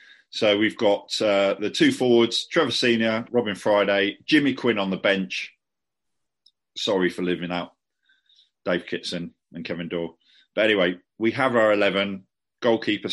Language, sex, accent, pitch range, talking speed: English, male, British, 95-120 Hz, 145 wpm